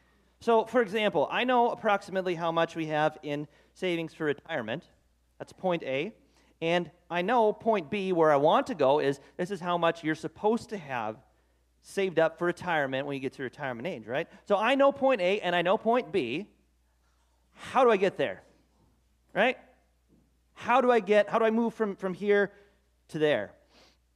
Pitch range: 145-215 Hz